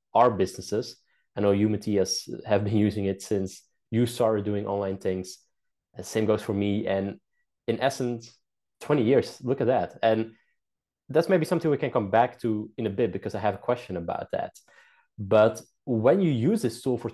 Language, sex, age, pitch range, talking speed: English, male, 20-39, 100-125 Hz, 195 wpm